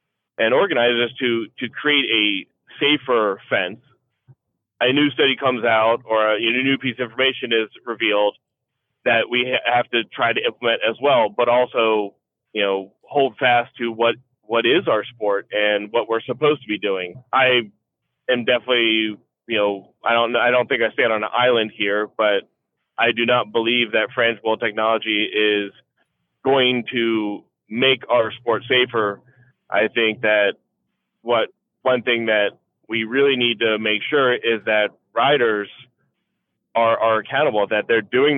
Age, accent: 30-49, American